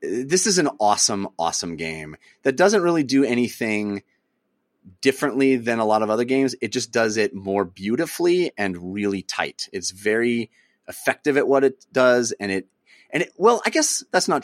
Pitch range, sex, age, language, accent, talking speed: 100-130 Hz, male, 30-49, English, American, 180 wpm